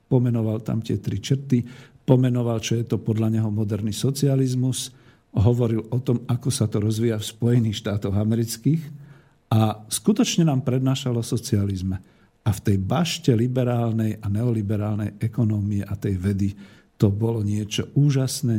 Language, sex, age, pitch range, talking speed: Slovak, male, 50-69, 105-120 Hz, 140 wpm